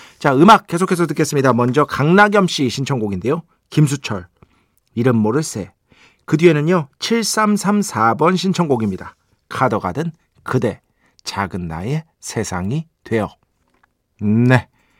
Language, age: Korean, 40-59